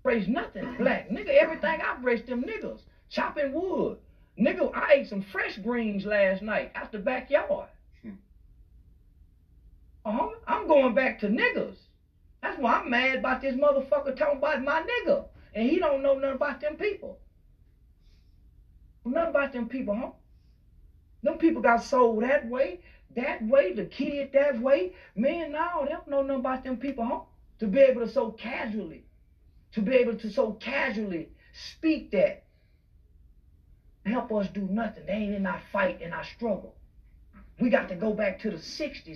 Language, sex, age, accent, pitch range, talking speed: English, male, 40-59, American, 190-275 Hz, 165 wpm